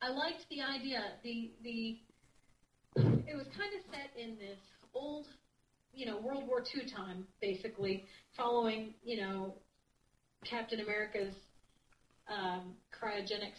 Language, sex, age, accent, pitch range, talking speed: English, female, 40-59, American, 195-250 Hz, 125 wpm